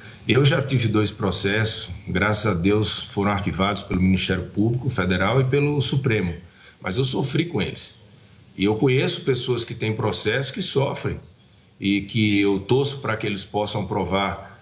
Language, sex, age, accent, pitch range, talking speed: Portuguese, male, 40-59, Brazilian, 105-135 Hz, 165 wpm